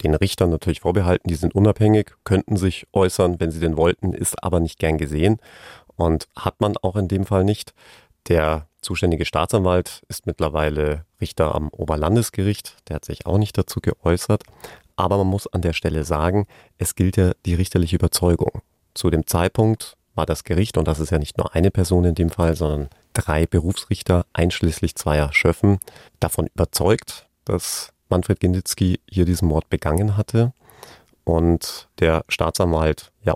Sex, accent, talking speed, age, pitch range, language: male, German, 165 wpm, 30-49, 80-100 Hz, German